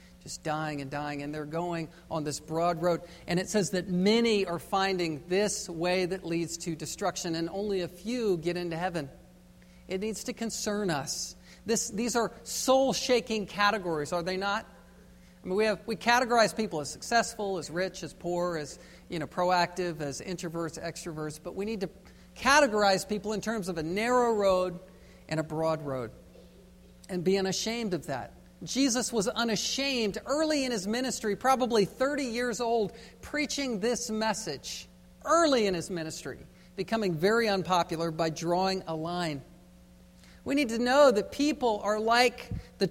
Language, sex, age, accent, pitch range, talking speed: English, male, 50-69, American, 170-230 Hz, 165 wpm